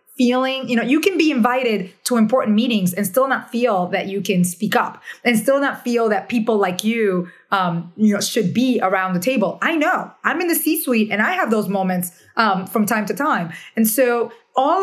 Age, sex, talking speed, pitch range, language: 30-49, female, 225 wpm, 190-235 Hz, English